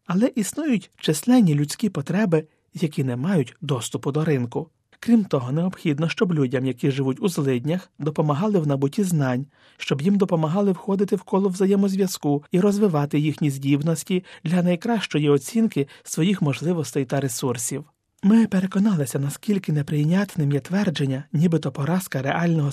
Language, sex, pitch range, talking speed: Ukrainian, male, 140-185 Hz, 135 wpm